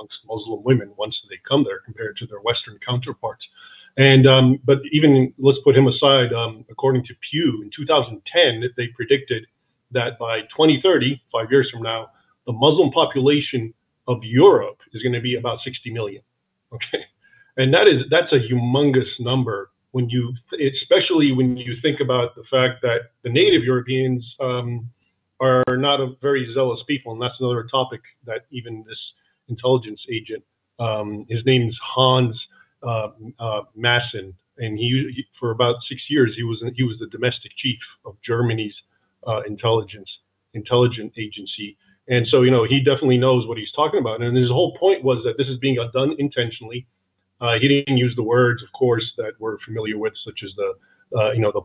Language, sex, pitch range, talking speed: English, male, 115-135 Hz, 175 wpm